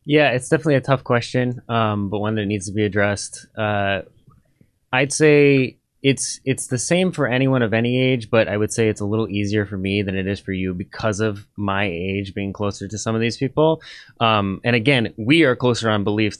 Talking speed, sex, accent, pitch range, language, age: 220 wpm, male, American, 100-120 Hz, English, 20-39